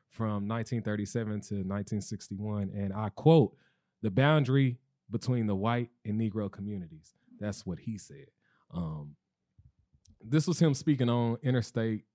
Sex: male